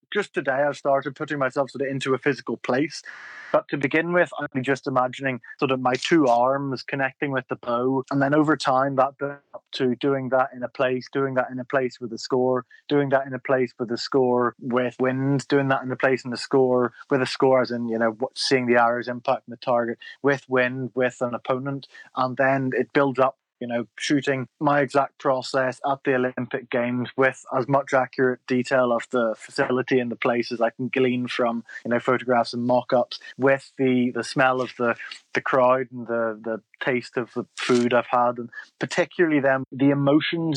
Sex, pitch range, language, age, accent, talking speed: male, 125-140 Hz, English, 20-39, British, 210 wpm